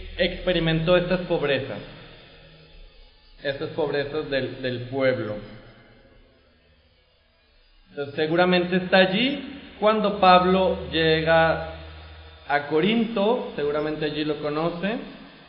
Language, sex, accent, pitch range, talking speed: Spanish, male, Mexican, 135-185 Hz, 80 wpm